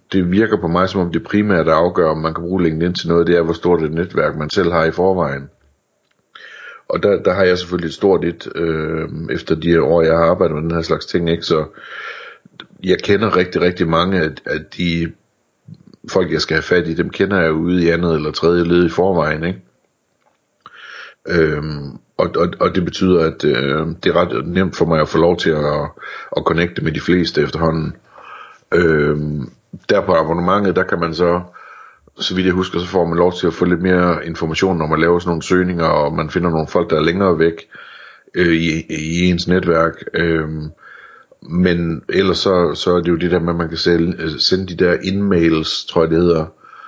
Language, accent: Danish, native